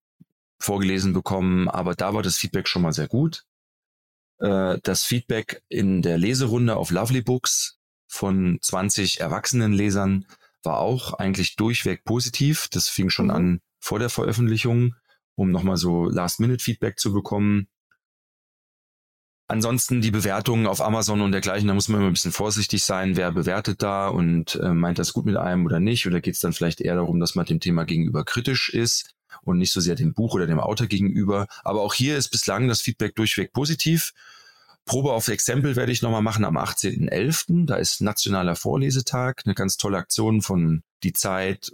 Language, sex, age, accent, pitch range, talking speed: German, male, 30-49, German, 95-120 Hz, 175 wpm